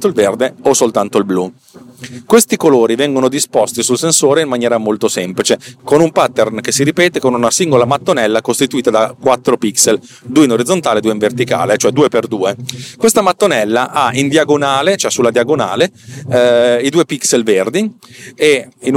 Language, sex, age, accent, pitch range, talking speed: Italian, male, 40-59, native, 120-155 Hz, 170 wpm